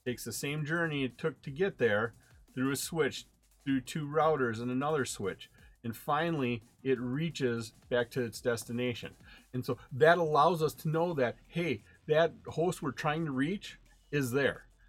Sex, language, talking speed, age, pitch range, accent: male, English, 175 wpm, 40-59, 120-160 Hz, American